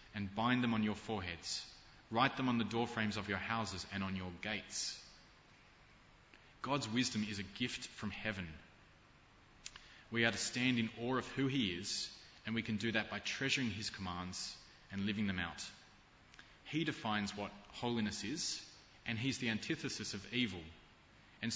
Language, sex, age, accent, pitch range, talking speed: English, male, 20-39, Australian, 95-115 Hz, 170 wpm